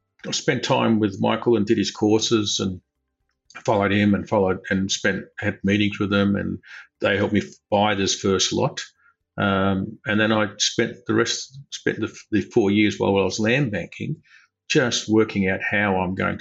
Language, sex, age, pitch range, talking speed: English, male, 50-69, 95-110 Hz, 185 wpm